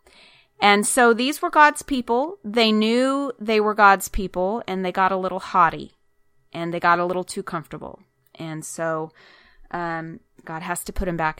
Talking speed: 180 wpm